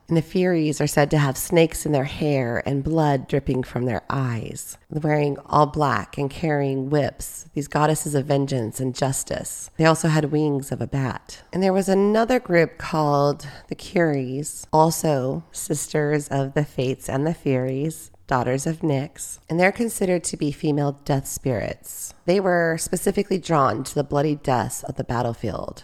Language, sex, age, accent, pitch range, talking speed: English, female, 30-49, American, 130-160 Hz, 170 wpm